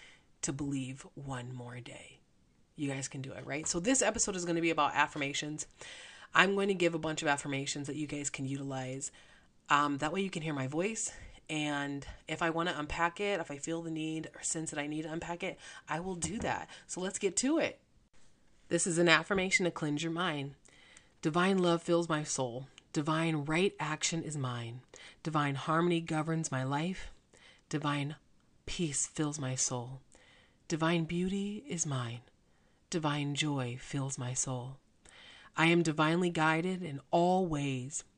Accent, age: American, 30-49